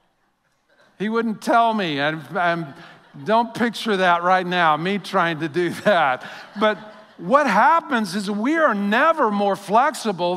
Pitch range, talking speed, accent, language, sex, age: 170-215 Hz, 140 wpm, American, English, male, 50-69